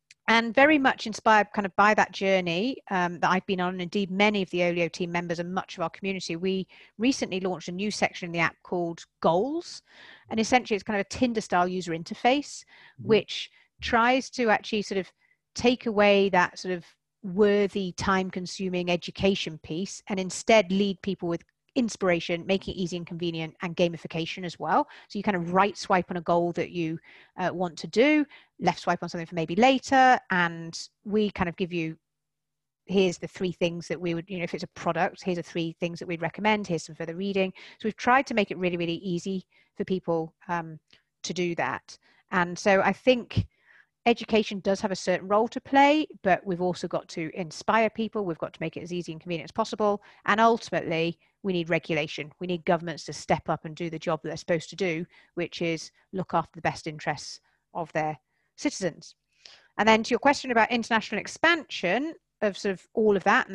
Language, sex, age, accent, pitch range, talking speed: English, female, 40-59, British, 170-210 Hz, 210 wpm